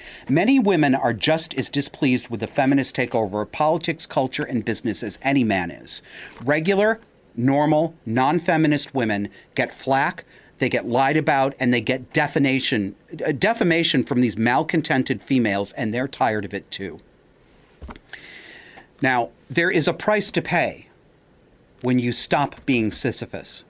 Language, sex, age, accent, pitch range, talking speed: English, male, 40-59, American, 120-155 Hz, 140 wpm